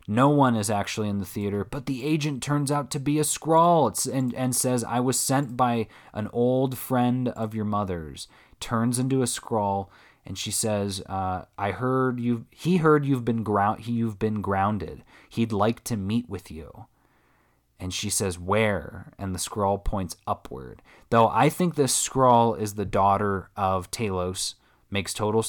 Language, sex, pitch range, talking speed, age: English, male, 100-125 Hz, 175 wpm, 20-39